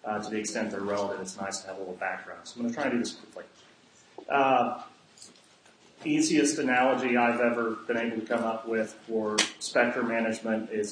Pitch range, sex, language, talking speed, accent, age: 110-120 Hz, male, English, 200 wpm, American, 30-49